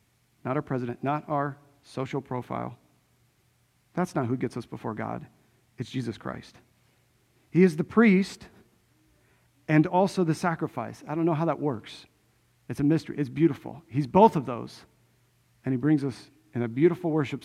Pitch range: 120-175 Hz